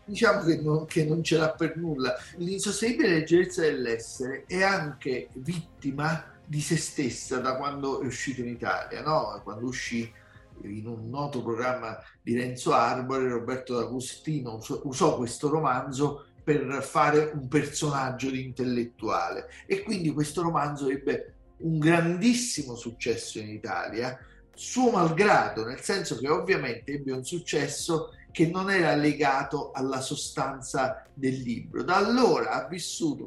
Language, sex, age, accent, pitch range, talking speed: Italian, male, 50-69, native, 130-170 Hz, 135 wpm